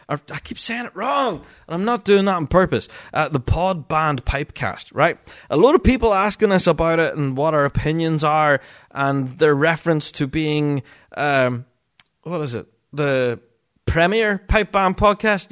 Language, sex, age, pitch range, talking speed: English, male, 30-49, 120-195 Hz, 175 wpm